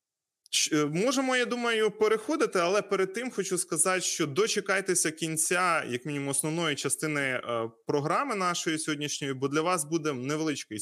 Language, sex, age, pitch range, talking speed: Ukrainian, male, 20-39, 125-170 Hz, 135 wpm